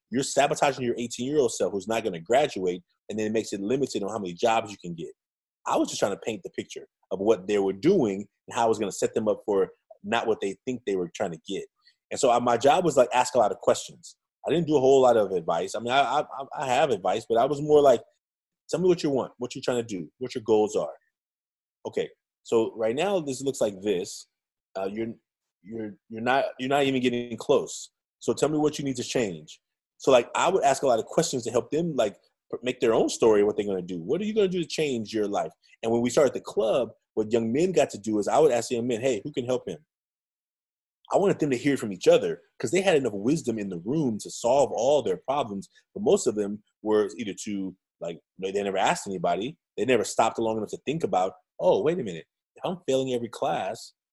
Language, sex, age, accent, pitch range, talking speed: English, male, 30-49, American, 105-145 Hz, 255 wpm